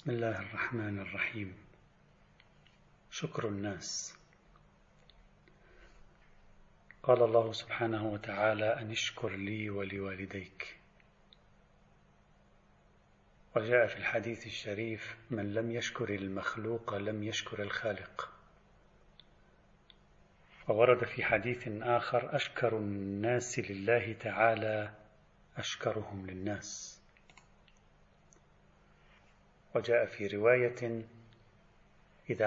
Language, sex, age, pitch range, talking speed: Arabic, male, 40-59, 105-120 Hz, 70 wpm